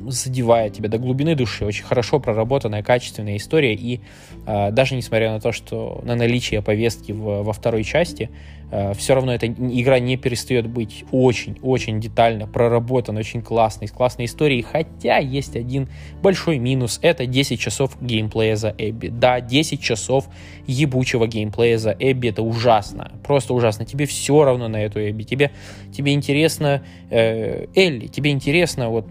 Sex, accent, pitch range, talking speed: male, native, 110-140 Hz, 155 wpm